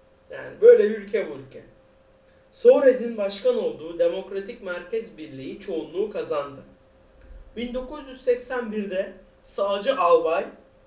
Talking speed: 95 wpm